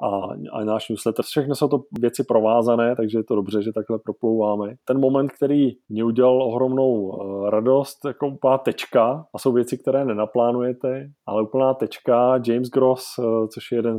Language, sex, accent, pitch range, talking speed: Czech, male, native, 105-125 Hz, 165 wpm